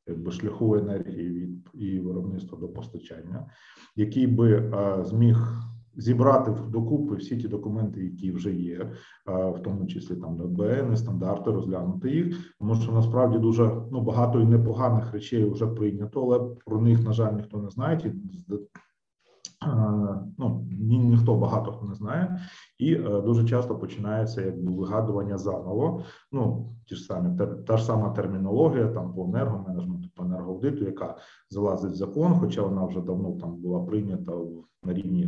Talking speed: 150 wpm